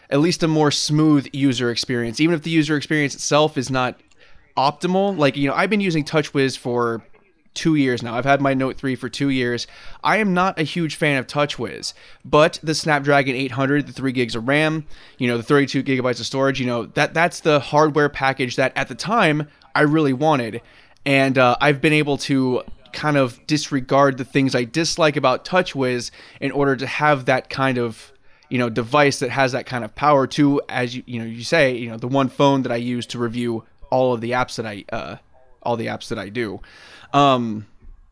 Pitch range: 125-150 Hz